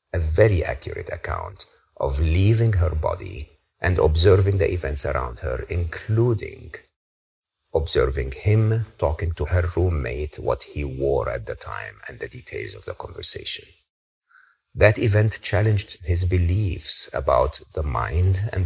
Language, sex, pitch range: English, male, 80-100 Hz